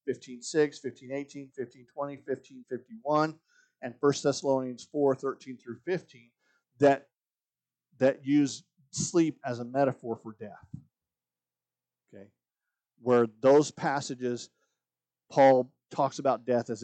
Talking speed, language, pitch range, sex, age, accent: 105 wpm, English, 120-175 Hz, male, 50-69, American